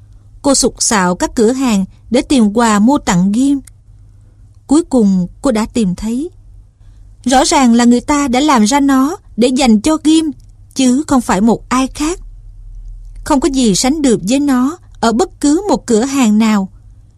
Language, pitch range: Vietnamese, 180-270 Hz